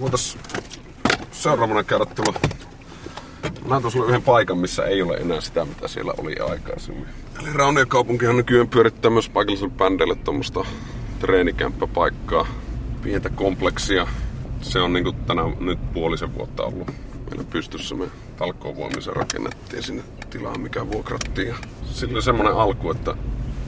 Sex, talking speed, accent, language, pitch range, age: male, 125 wpm, native, Finnish, 115-125 Hz, 30-49